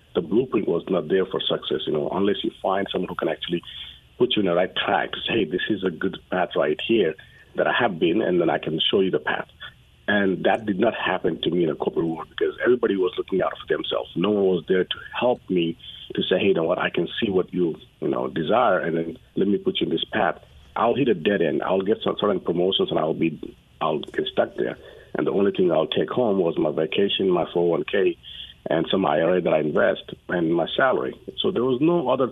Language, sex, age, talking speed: English, male, 50-69, 250 wpm